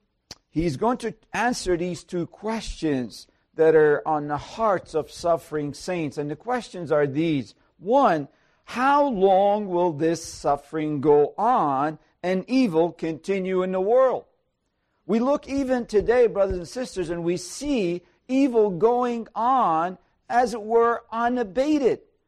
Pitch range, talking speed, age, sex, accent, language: 160-245 Hz, 135 wpm, 50-69, male, American, English